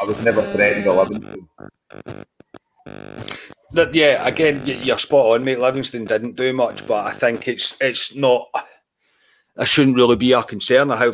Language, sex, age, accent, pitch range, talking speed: English, male, 40-59, British, 110-145 Hz, 160 wpm